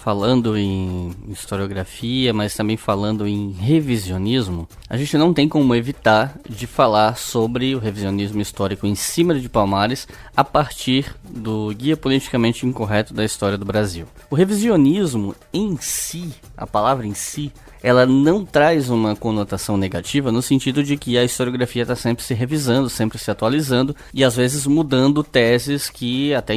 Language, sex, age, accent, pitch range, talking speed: Portuguese, male, 10-29, Brazilian, 115-145 Hz, 155 wpm